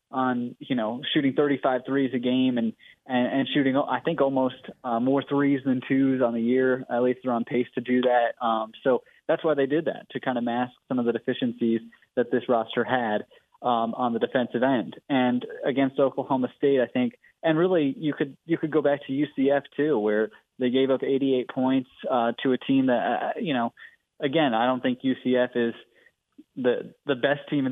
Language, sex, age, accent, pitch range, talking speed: English, male, 20-39, American, 120-140 Hz, 210 wpm